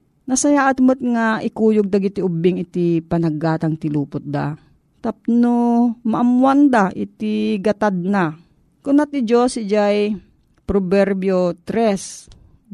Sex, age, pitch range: female, 40-59, 175-225 Hz